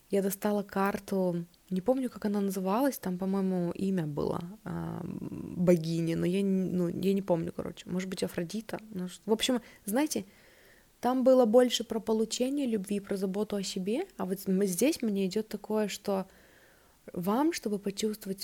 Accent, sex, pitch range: native, female, 180-205 Hz